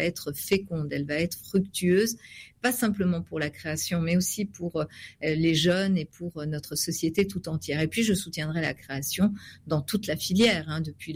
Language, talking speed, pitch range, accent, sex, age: French, 185 wpm, 150-185 Hz, French, female, 50-69